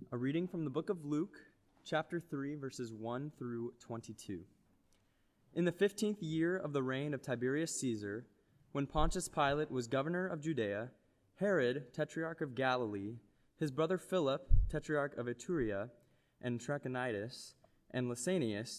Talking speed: 140 wpm